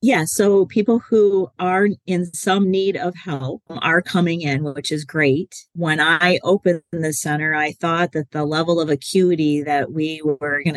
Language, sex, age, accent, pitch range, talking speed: English, female, 40-59, American, 150-180 Hz, 180 wpm